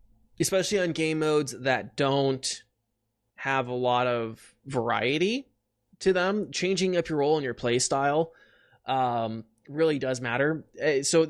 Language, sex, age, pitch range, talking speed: English, male, 20-39, 125-165 Hz, 140 wpm